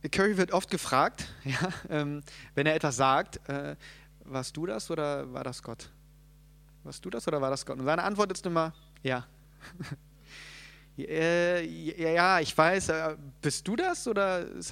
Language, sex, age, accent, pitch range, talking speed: German, male, 30-49, German, 145-170 Hz, 165 wpm